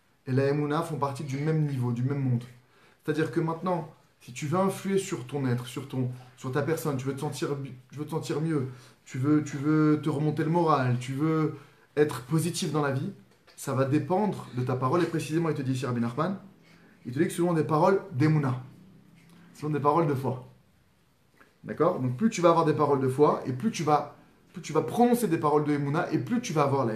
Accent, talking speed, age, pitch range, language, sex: French, 230 wpm, 30-49, 135-180 Hz, French, male